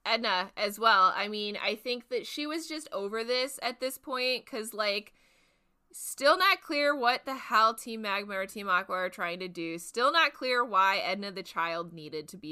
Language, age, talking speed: English, 20-39, 205 wpm